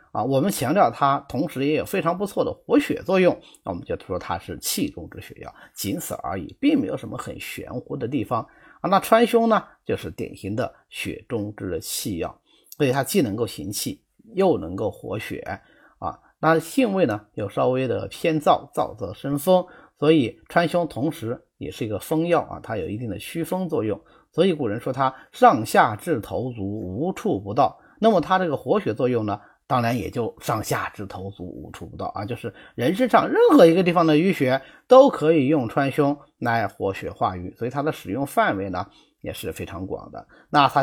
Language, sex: Chinese, male